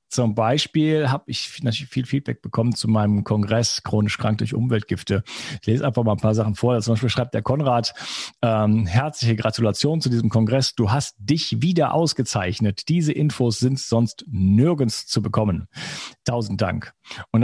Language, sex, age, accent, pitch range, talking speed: German, male, 40-59, German, 110-135 Hz, 170 wpm